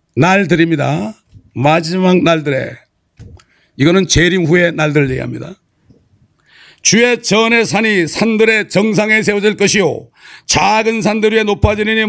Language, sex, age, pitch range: Korean, male, 40-59, 150-215 Hz